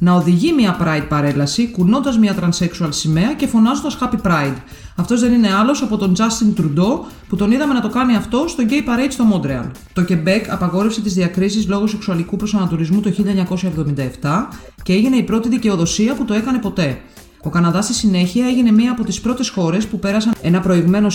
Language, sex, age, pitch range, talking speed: Greek, female, 30-49, 170-225 Hz, 185 wpm